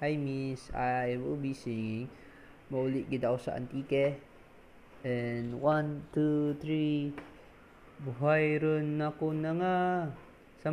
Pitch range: 130-155 Hz